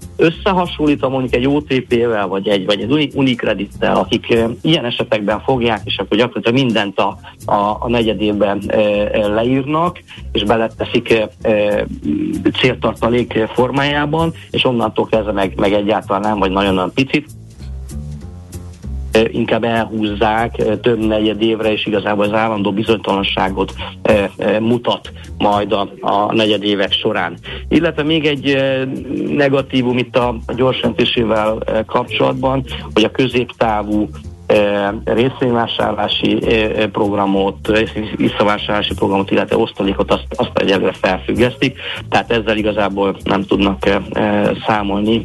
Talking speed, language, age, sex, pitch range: 105 wpm, Hungarian, 50-69, male, 100-125 Hz